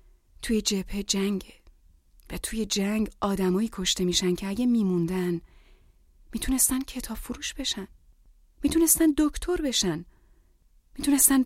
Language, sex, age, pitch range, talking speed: Persian, female, 30-49, 190-280 Hz, 105 wpm